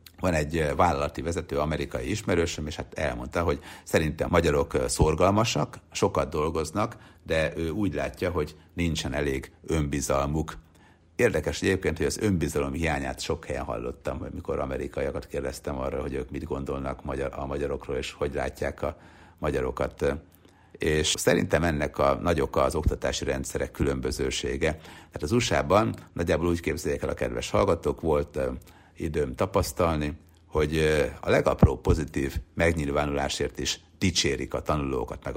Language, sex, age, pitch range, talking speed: Hungarian, male, 60-79, 75-90 Hz, 135 wpm